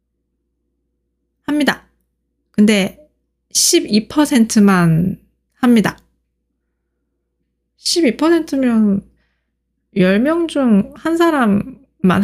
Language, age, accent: Korean, 20-39, native